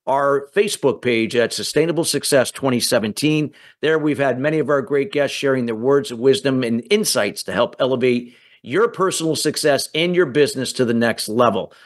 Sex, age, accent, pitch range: male, 50-69, American, 140-170 Hz